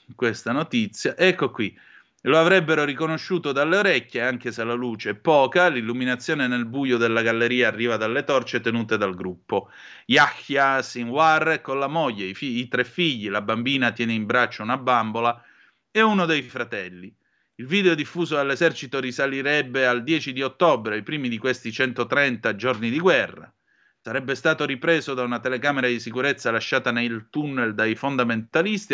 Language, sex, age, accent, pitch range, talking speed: Italian, male, 30-49, native, 120-165 Hz, 160 wpm